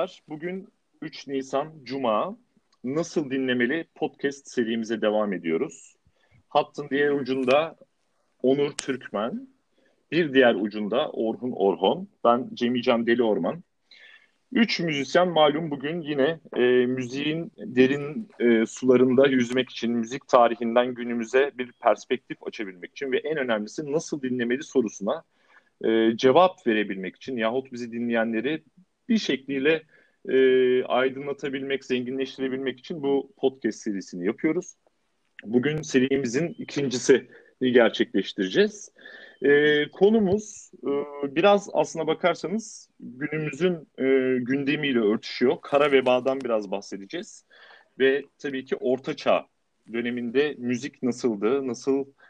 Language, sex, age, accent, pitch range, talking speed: Turkish, male, 40-59, native, 120-150 Hz, 105 wpm